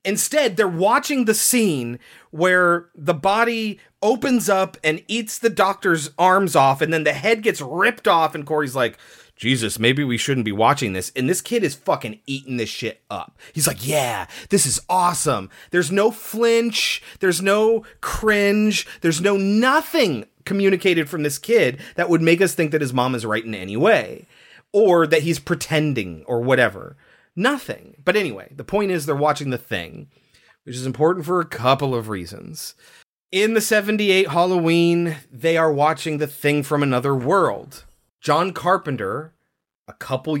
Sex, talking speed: male, 170 wpm